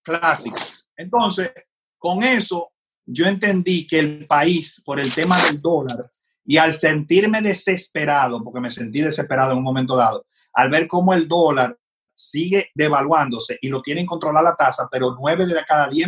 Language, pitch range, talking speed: Spanish, 150-190 Hz, 165 wpm